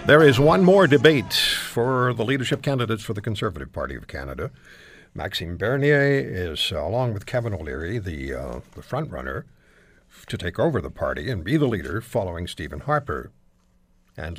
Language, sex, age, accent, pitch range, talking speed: English, male, 60-79, American, 90-145 Hz, 165 wpm